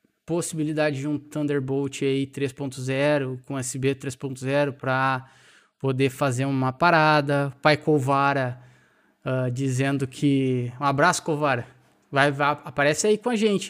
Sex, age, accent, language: male, 20-39, Brazilian, Portuguese